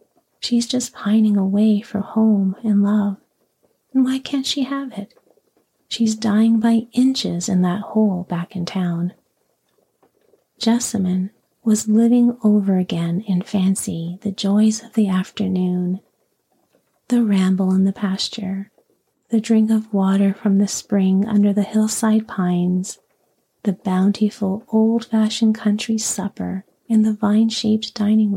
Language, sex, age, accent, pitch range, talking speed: English, female, 40-59, American, 185-220 Hz, 130 wpm